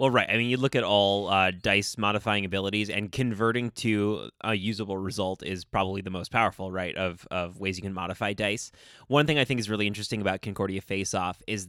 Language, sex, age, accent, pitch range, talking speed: English, male, 20-39, American, 100-115 Hz, 215 wpm